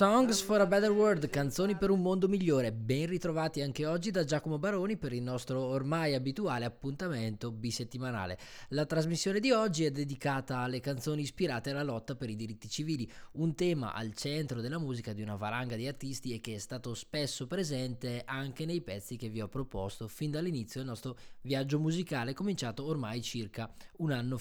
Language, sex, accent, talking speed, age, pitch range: Italian, male, native, 180 wpm, 20-39, 115-160 Hz